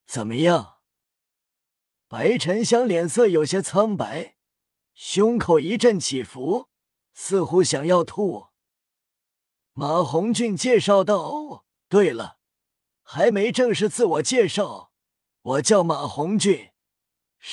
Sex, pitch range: male, 160-230 Hz